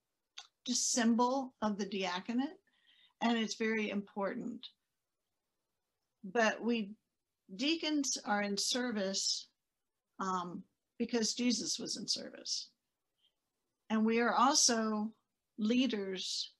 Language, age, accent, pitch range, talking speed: English, 60-79, American, 195-245 Hz, 95 wpm